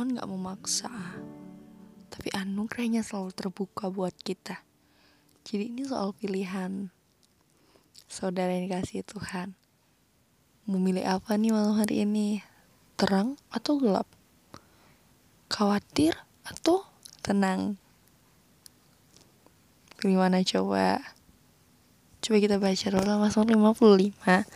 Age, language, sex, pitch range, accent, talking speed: 20-39, Indonesian, female, 195-230 Hz, native, 85 wpm